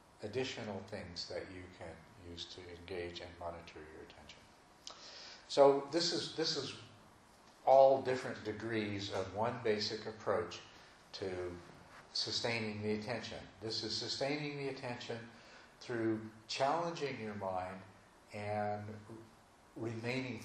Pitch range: 100-120 Hz